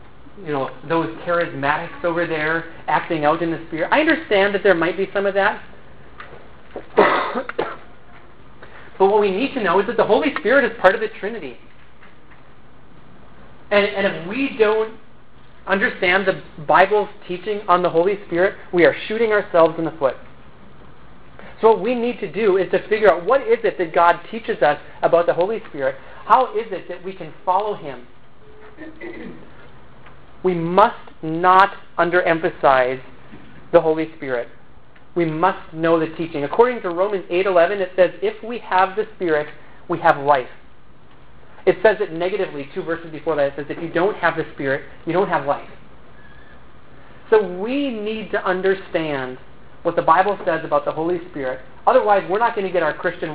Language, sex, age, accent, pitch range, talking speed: English, male, 30-49, American, 155-200 Hz, 170 wpm